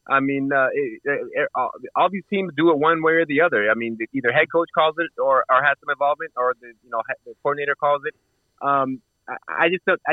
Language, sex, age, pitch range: English, male, 30-49, 125-160 Hz